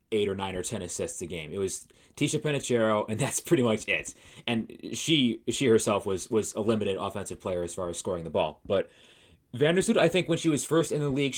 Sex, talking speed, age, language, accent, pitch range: male, 230 wpm, 30-49, English, American, 100-145 Hz